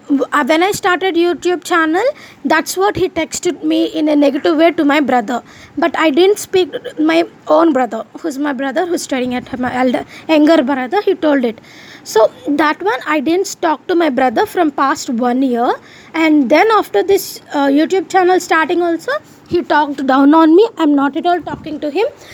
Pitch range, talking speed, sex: 280-345 Hz, 195 wpm, female